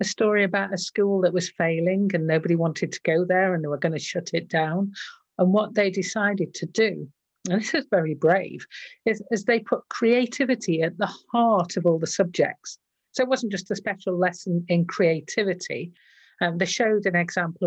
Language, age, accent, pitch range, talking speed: English, 50-69, British, 175-215 Hz, 195 wpm